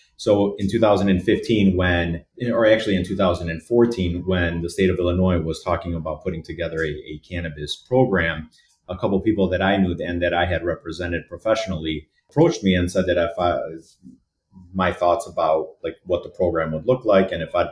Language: English